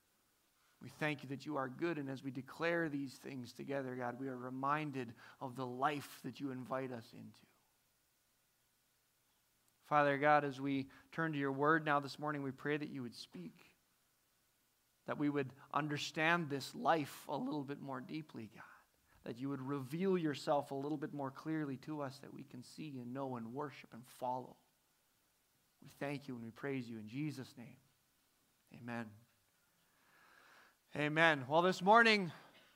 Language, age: English, 30-49